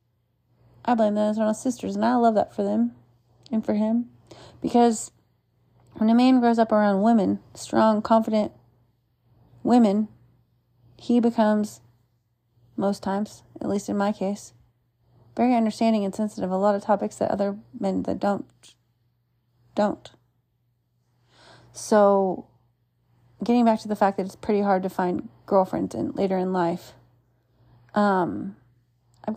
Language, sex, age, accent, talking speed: English, female, 30-49, American, 140 wpm